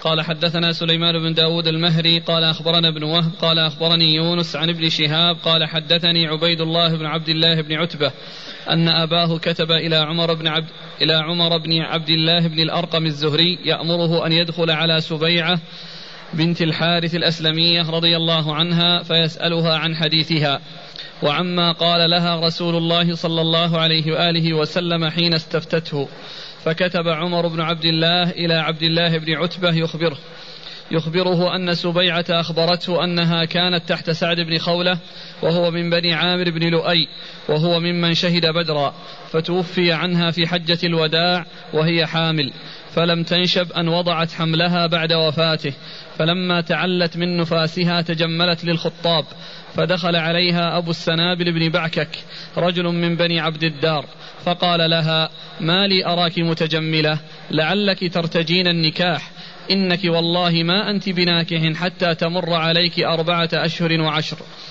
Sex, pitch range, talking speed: male, 160-175 Hz, 135 wpm